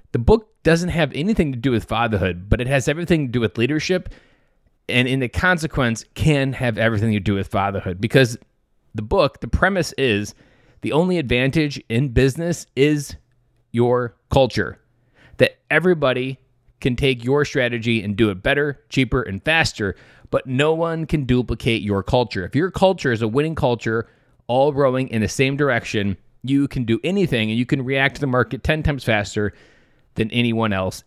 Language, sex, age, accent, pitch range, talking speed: English, male, 30-49, American, 110-140 Hz, 180 wpm